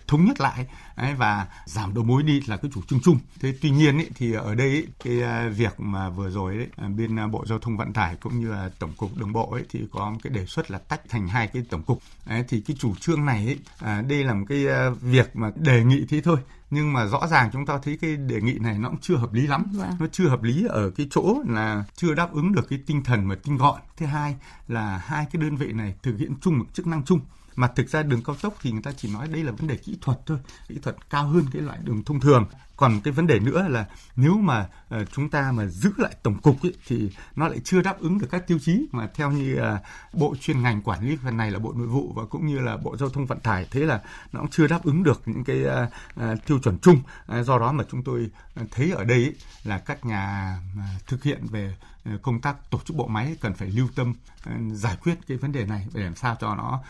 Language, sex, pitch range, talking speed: Vietnamese, male, 110-150 Hz, 260 wpm